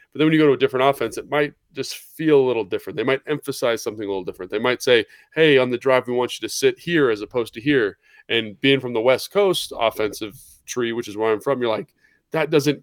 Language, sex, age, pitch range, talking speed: English, male, 20-39, 115-150 Hz, 265 wpm